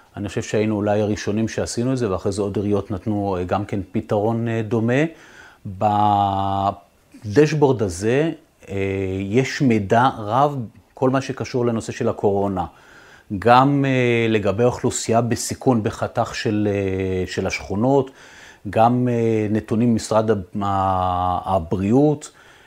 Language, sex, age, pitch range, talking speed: Hebrew, male, 40-59, 100-125 Hz, 105 wpm